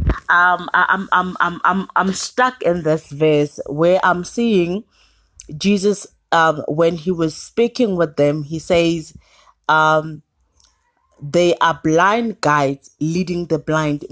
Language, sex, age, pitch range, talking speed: English, female, 30-49, 155-195 Hz, 135 wpm